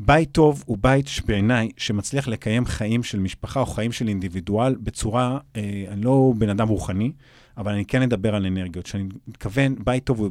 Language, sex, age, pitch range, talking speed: Hebrew, male, 30-49, 105-125 Hz, 185 wpm